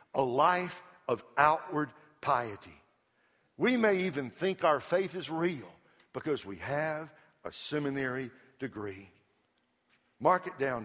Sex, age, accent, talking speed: male, 60-79, American, 120 wpm